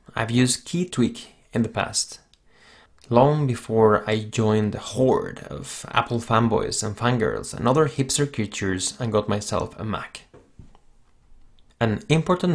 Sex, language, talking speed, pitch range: male, English, 135 wpm, 110-135 Hz